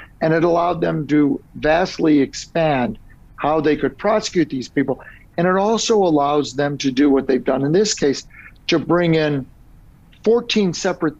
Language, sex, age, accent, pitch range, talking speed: English, male, 50-69, American, 135-180 Hz, 165 wpm